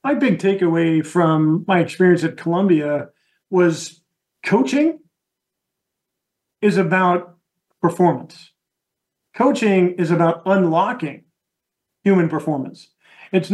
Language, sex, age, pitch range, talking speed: English, male, 40-59, 170-195 Hz, 90 wpm